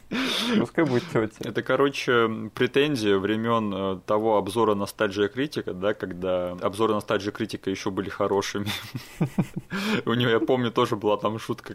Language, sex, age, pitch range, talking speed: Russian, male, 20-39, 100-130 Hz, 125 wpm